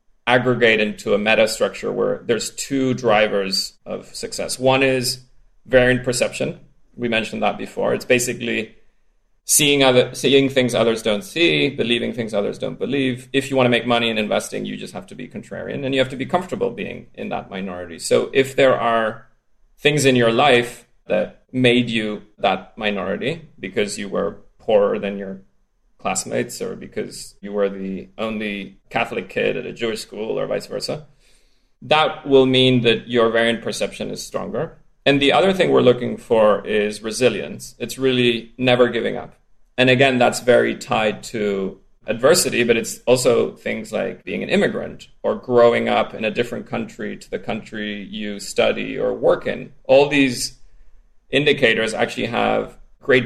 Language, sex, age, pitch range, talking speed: English, male, 30-49, 110-130 Hz, 170 wpm